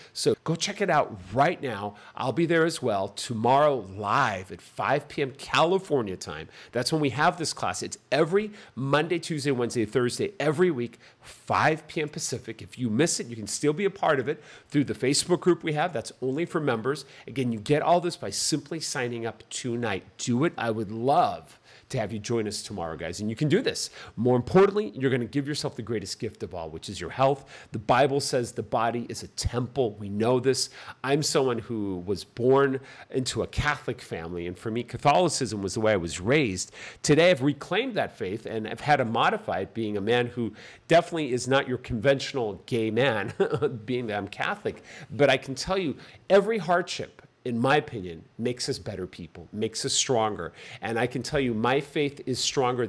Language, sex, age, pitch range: English, male, 40-59, 110-150 Hz